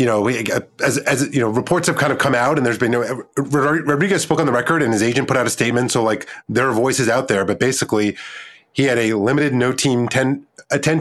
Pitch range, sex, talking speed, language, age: 120-145 Hz, male, 250 wpm, English, 30-49